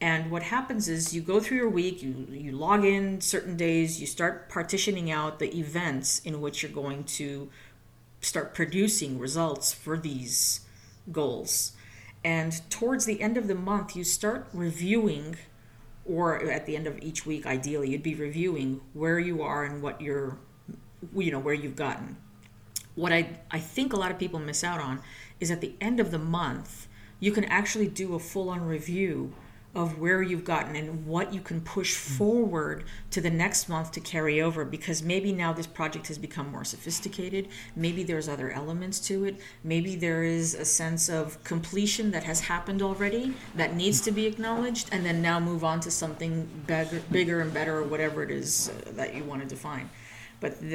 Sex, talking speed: female, 190 wpm